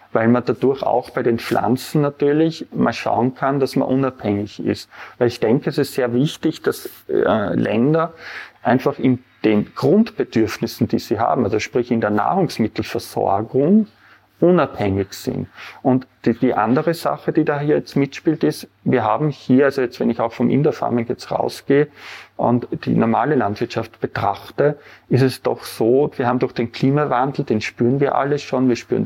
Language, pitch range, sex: German, 115-145 Hz, male